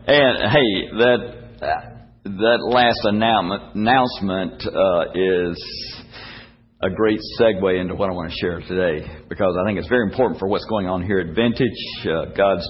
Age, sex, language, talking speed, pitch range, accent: 60-79, male, English, 155 wpm, 95-115 Hz, American